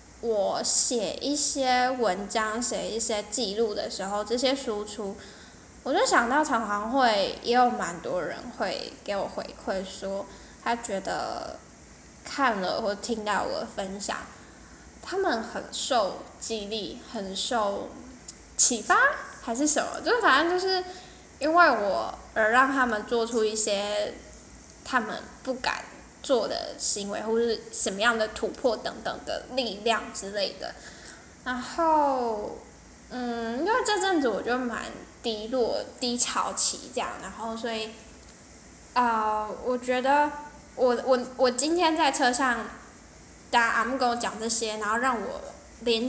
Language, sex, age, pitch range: Chinese, female, 10-29, 215-265 Hz